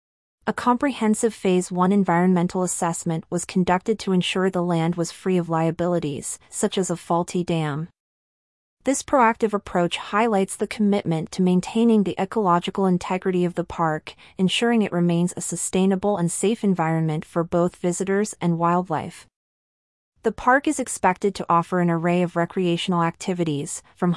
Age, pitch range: 30-49, 170-205 Hz